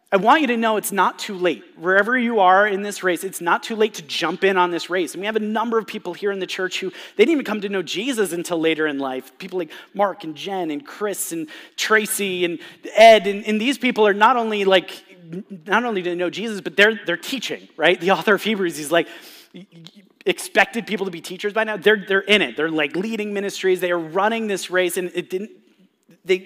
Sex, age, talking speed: male, 30-49, 245 wpm